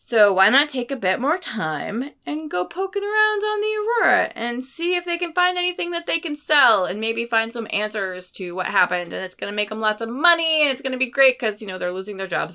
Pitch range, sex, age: 200-315 Hz, female, 20-39